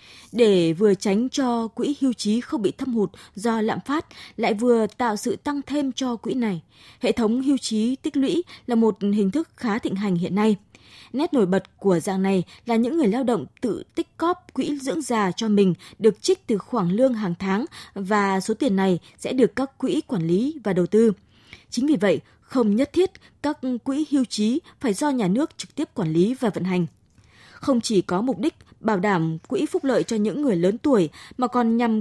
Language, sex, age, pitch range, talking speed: Vietnamese, female, 20-39, 195-265 Hz, 215 wpm